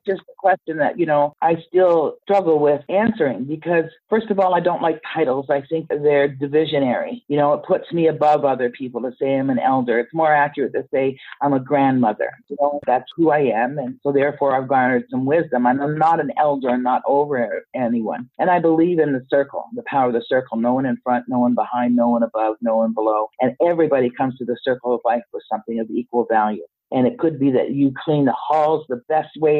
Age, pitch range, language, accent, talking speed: 50-69, 125-160 Hz, English, American, 230 wpm